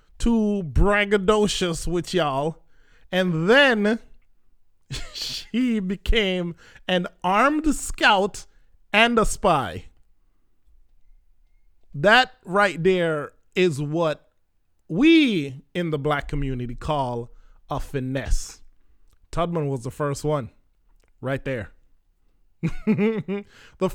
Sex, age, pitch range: male, 20-39, 125-205 Hz